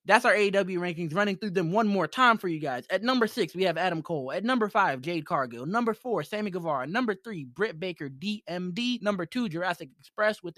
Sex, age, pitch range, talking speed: male, 20-39, 145-195 Hz, 220 wpm